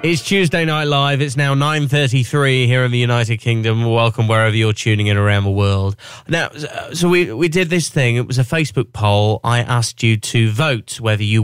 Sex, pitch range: male, 120-175 Hz